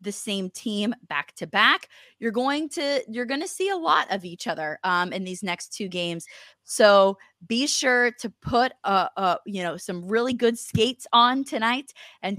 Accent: American